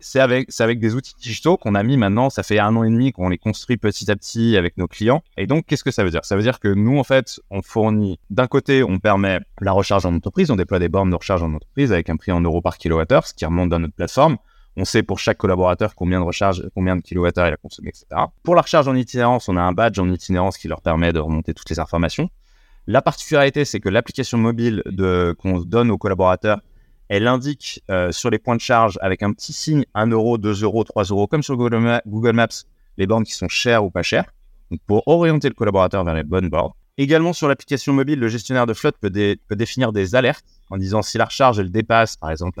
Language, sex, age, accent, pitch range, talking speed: French, male, 20-39, French, 90-120 Hz, 255 wpm